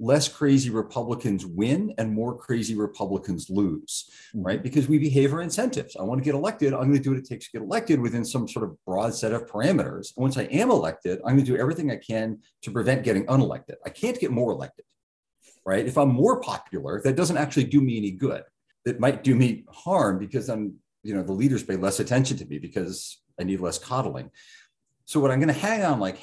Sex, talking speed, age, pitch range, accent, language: male, 225 wpm, 40-59, 100-135 Hz, American, English